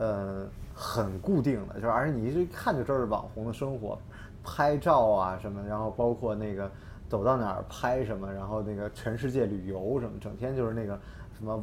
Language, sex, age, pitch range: Chinese, male, 20-39, 105-145 Hz